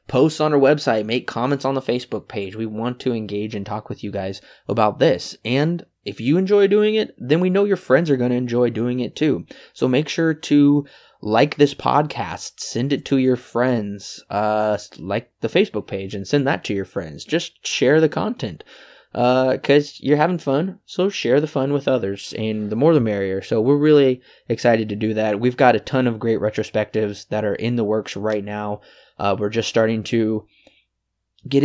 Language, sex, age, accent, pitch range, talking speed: English, male, 20-39, American, 110-140 Hz, 205 wpm